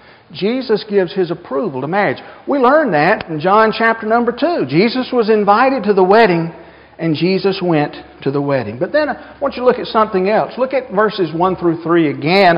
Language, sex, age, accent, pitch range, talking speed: English, male, 50-69, American, 170-225 Hz, 205 wpm